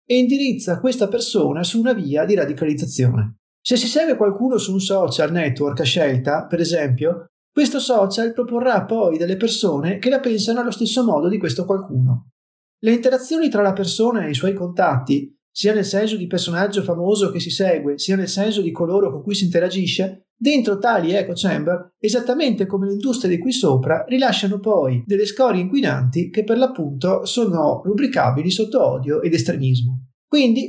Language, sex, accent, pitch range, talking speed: Italian, male, native, 165-225 Hz, 175 wpm